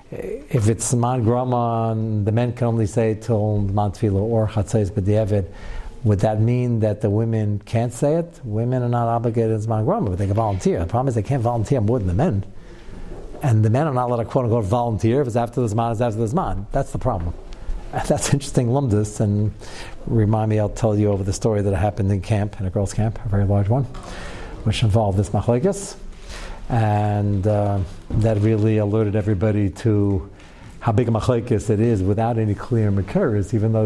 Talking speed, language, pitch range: 195 wpm, English, 100-120 Hz